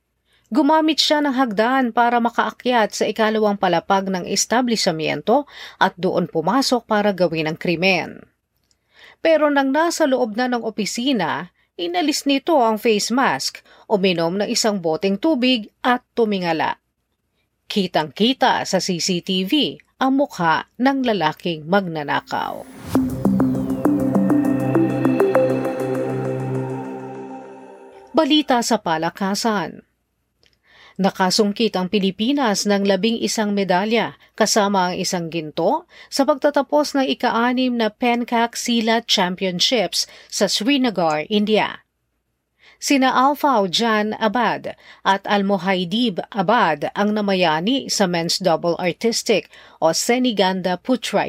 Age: 40-59